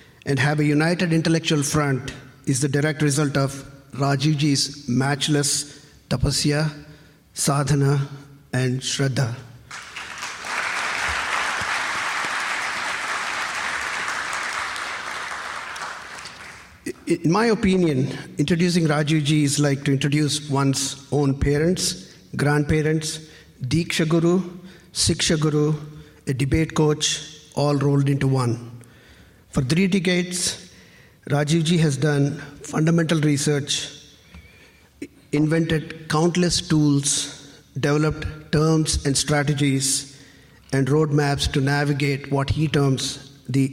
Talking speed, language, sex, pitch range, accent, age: 90 wpm, English, male, 140-155 Hz, Indian, 50-69